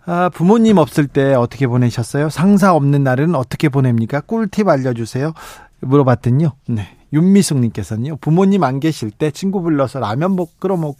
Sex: male